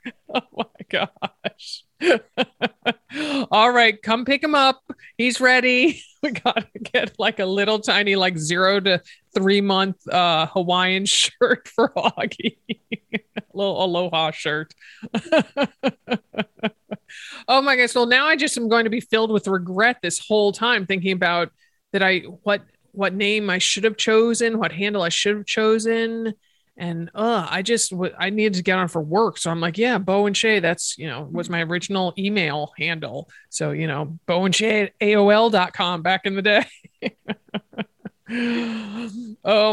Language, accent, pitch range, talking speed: English, American, 180-230 Hz, 155 wpm